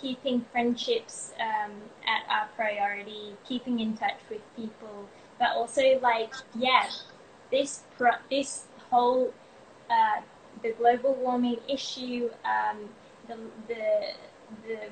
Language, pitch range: English, 215-255 Hz